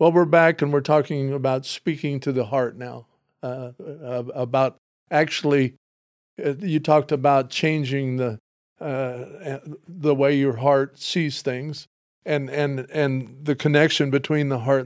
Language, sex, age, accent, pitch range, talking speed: English, male, 50-69, American, 130-150 Hz, 140 wpm